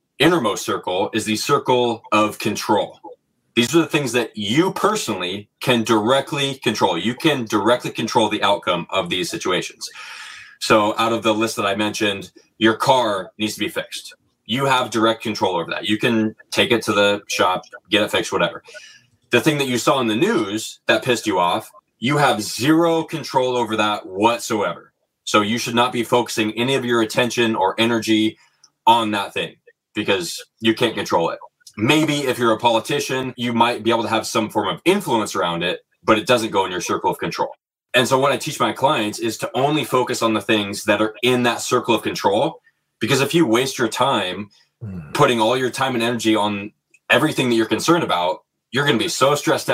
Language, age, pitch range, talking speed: English, 20-39, 110-135 Hz, 200 wpm